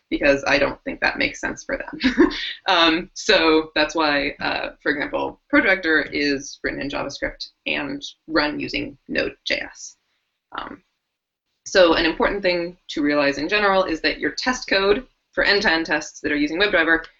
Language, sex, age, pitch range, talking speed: English, female, 20-39, 155-250 Hz, 155 wpm